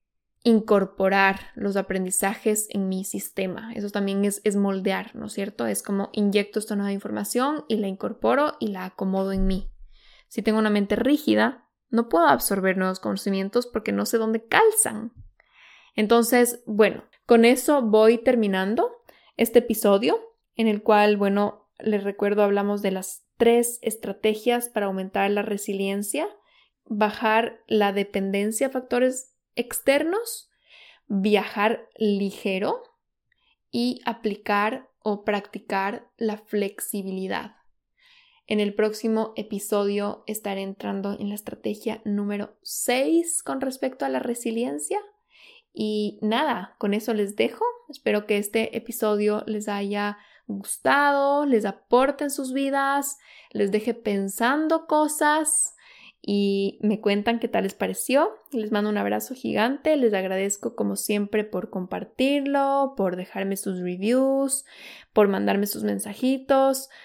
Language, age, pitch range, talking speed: Spanish, 10-29, 200-245 Hz, 130 wpm